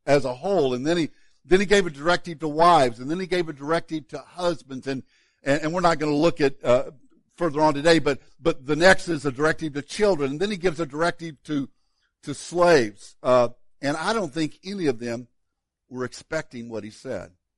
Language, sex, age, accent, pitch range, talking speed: English, male, 60-79, American, 140-185 Hz, 220 wpm